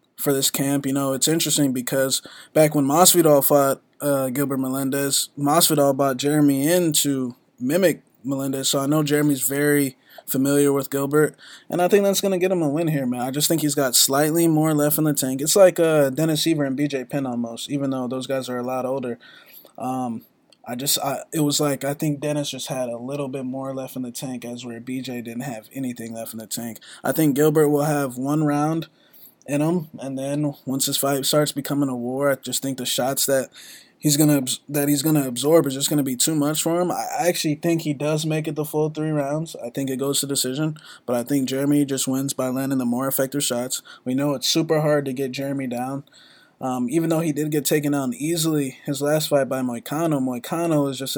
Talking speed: 225 wpm